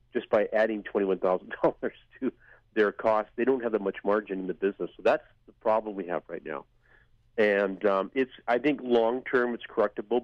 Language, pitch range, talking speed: English, 95-115 Hz, 190 wpm